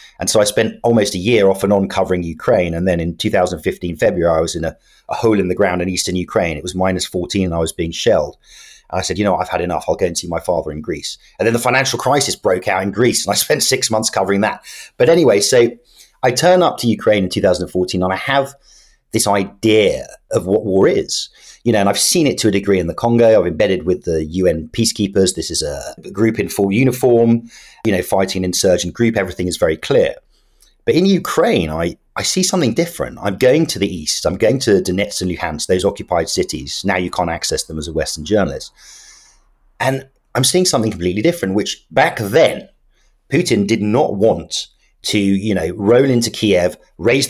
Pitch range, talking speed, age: 90-120 Hz, 220 wpm, 30-49